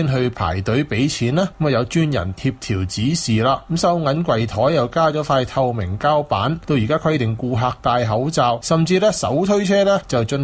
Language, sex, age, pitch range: Chinese, male, 20-39, 110-160 Hz